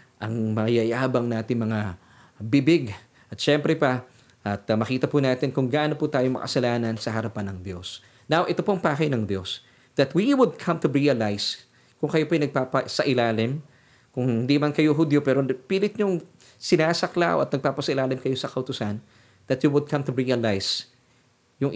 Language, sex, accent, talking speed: Filipino, male, native, 170 wpm